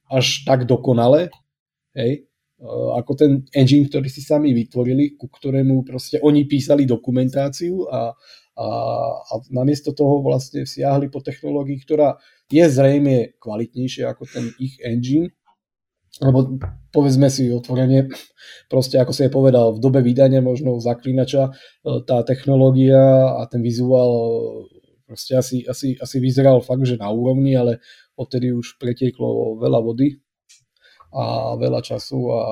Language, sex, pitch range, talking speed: Slovak, male, 120-140 Hz, 130 wpm